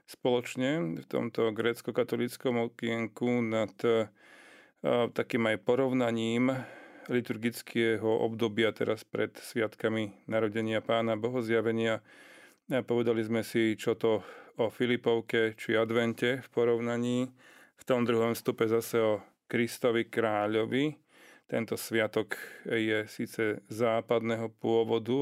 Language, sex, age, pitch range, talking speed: Slovak, male, 40-59, 110-120 Hz, 100 wpm